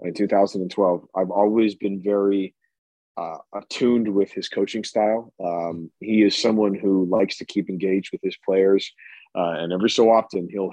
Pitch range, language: 100-120 Hz, English